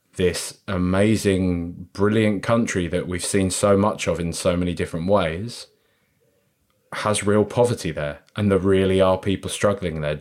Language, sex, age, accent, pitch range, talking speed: English, male, 20-39, British, 90-120 Hz, 155 wpm